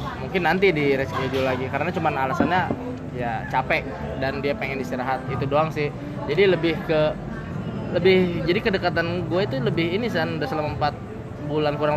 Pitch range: 130-155 Hz